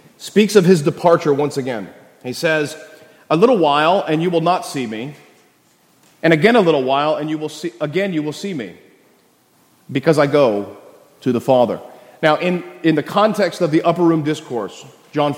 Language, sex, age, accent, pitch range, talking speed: English, male, 30-49, American, 145-195 Hz, 185 wpm